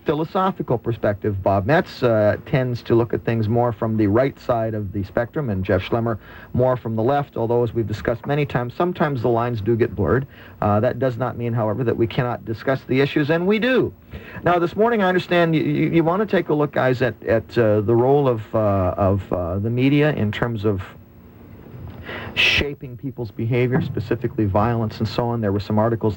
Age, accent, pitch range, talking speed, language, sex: 50-69, American, 110-130 Hz, 205 wpm, English, male